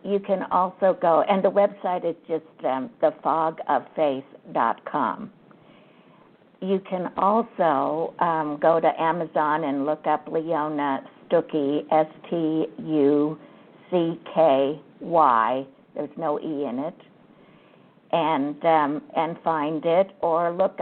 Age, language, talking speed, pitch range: 60-79, English, 105 wpm, 150-180 Hz